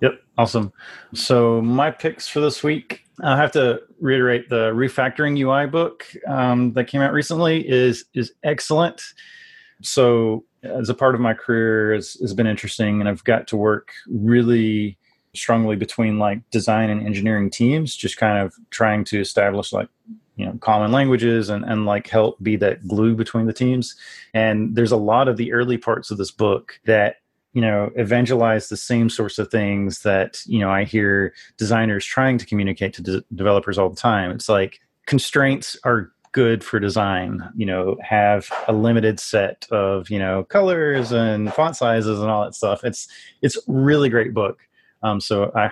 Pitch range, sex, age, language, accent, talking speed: 105-125 Hz, male, 30-49, English, American, 175 wpm